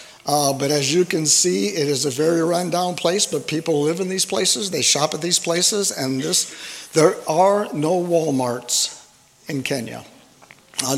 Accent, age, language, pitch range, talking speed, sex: American, 60-79, English, 135-160 Hz, 170 wpm, male